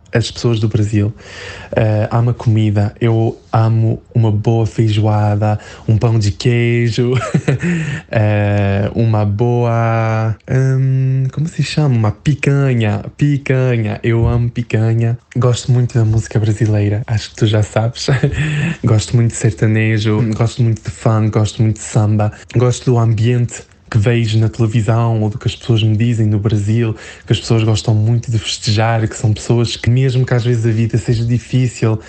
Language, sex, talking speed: Portuguese, male, 160 wpm